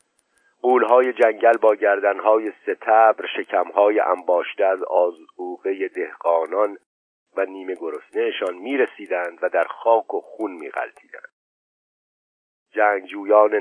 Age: 50-69